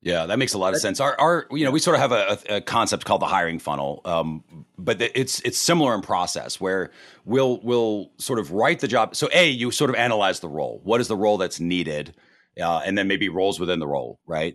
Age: 40-59